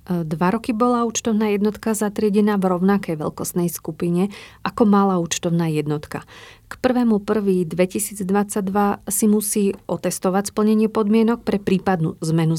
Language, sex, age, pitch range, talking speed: Slovak, female, 40-59, 180-215 Hz, 115 wpm